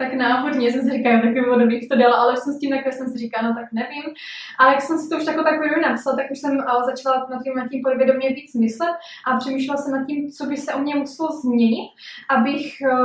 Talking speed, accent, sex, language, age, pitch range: 235 wpm, native, female, Czech, 20-39, 245-270 Hz